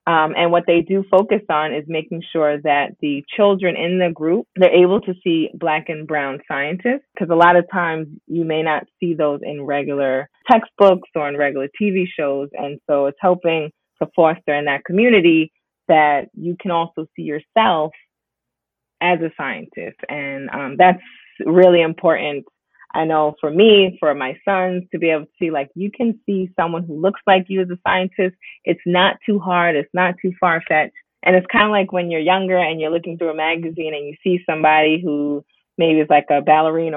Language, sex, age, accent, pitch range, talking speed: English, female, 20-39, American, 150-185 Hz, 195 wpm